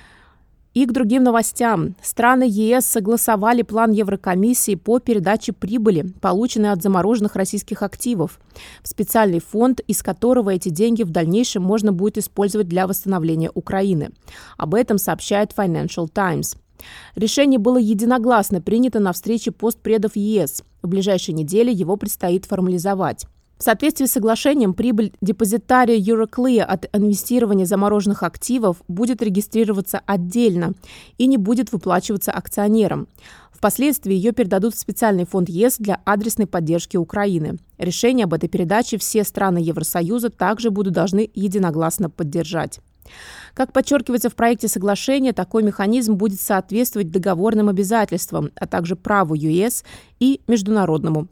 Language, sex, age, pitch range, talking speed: Russian, female, 20-39, 190-230 Hz, 130 wpm